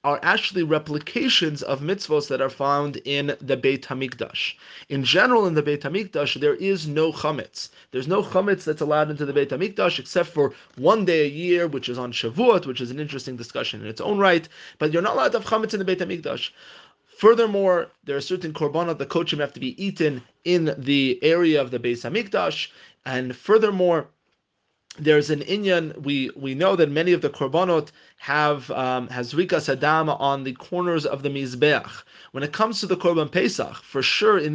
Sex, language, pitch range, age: male, English, 135-175 Hz, 30-49